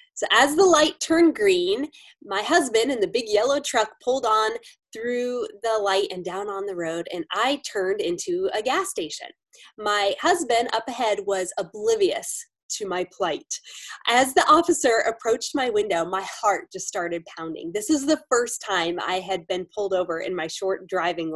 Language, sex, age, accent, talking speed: English, female, 20-39, American, 180 wpm